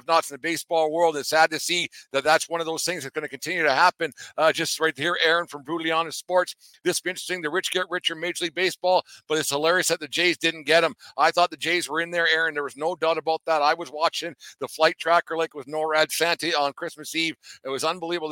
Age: 60-79